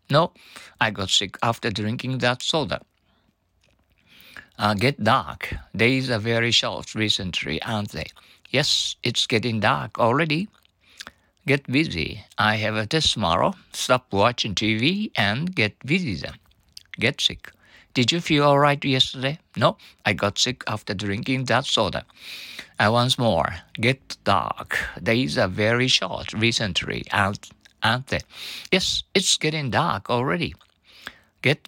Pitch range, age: 105-140 Hz, 50-69